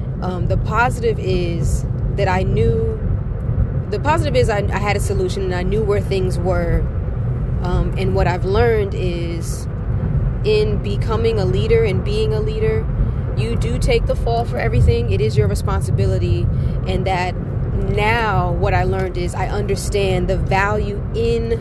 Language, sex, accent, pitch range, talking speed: English, female, American, 95-125 Hz, 160 wpm